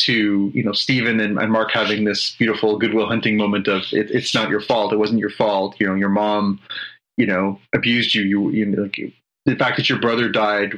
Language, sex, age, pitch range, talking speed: English, male, 30-49, 105-125 Hz, 215 wpm